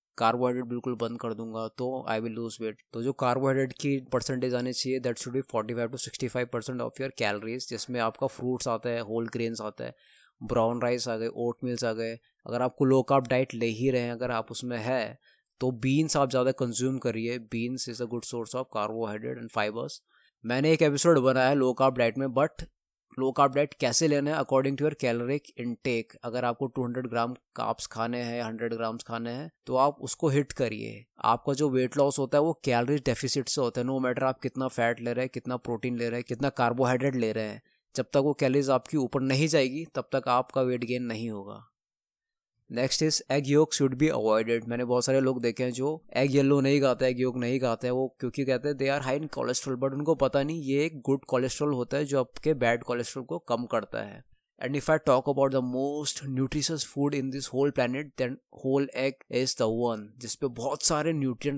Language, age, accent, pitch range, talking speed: Hindi, 20-39, native, 120-140 Hz, 215 wpm